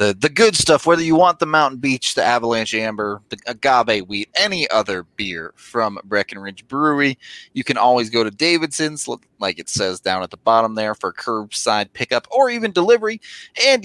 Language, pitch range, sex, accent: English, 105-155 Hz, male, American